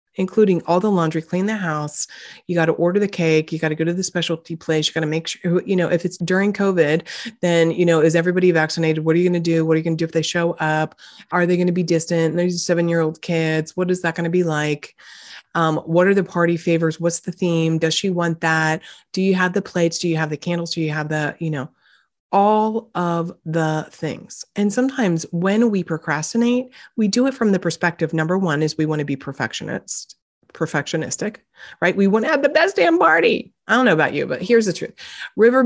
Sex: female